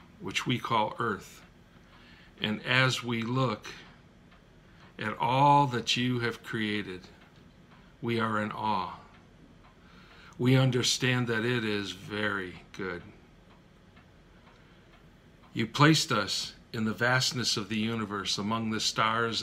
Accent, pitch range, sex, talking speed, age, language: American, 105-125 Hz, male, 115 wpm, 50-69, English